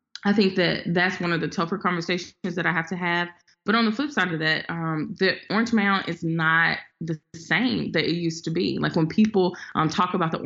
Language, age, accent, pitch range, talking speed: English, 20-39, American, 155-180 Hz, 235 wpm